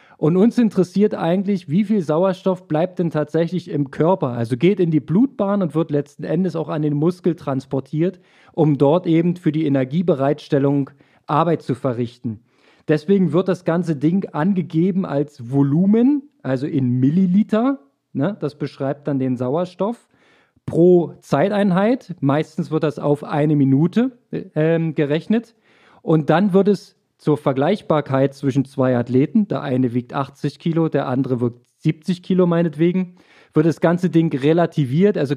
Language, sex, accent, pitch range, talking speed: German, male, German, 140-185 Hz, 150 wpm